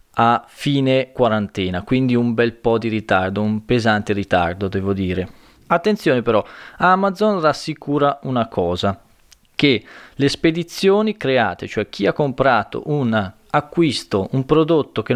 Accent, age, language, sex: native, 20-39, Italian, male